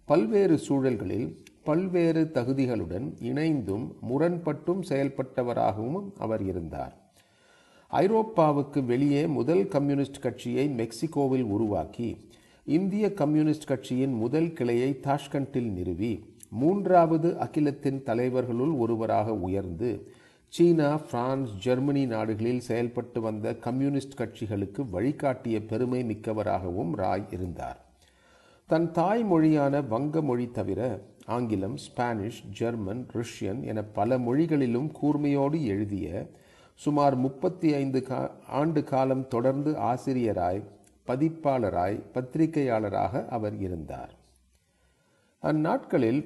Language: Tamil